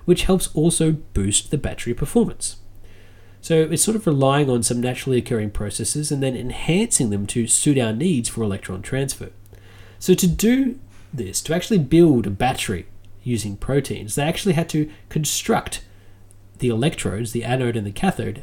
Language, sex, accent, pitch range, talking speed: English, male, Australian, 100-145 Hz, 165 wpm